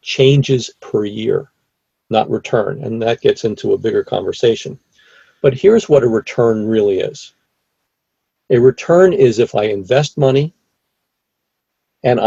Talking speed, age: 130 wpm, 50-69